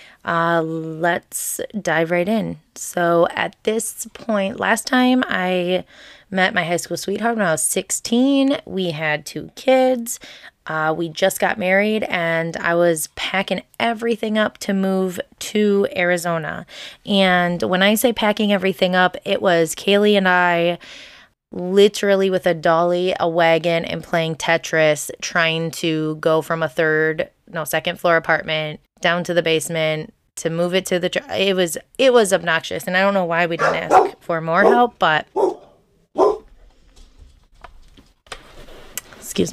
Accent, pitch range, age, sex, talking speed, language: American, 170-210 Hz, 20-39, female, 150 wpm, English